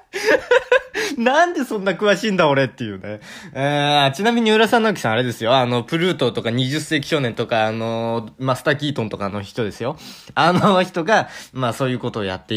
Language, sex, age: Japanese, male, 20-39